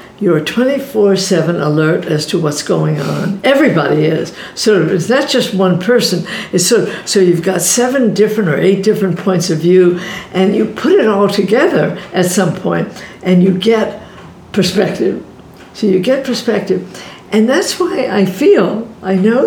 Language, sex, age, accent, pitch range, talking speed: English, female, 60-79, American, 180-220 Hz, 165 wpm